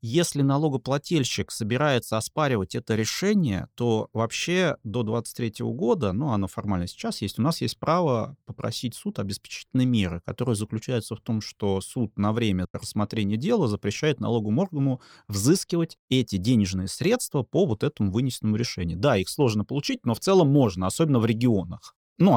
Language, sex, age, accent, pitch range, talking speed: Russian, male, 30-49, native, 110-155 Hz, 155 wpm